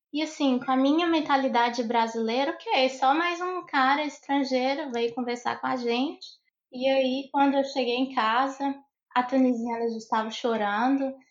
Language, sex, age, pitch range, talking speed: Portuguese, female, 20-39, 240-275 Hz, 170 wpm